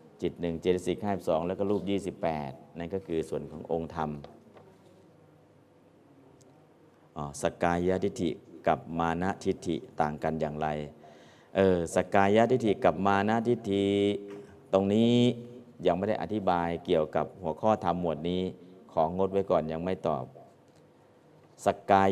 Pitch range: 85-100 Hz